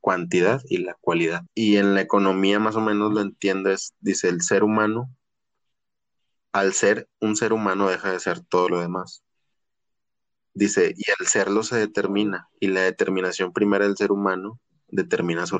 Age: 20-39